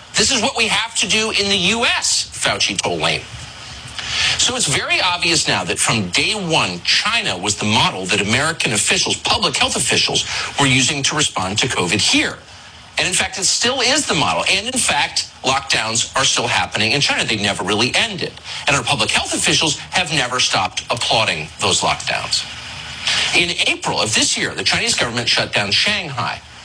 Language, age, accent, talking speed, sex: English, 40-59, American, 185 wpm, male